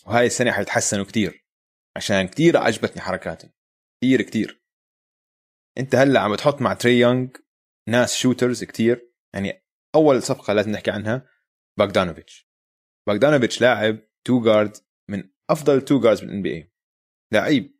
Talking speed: 125 wpm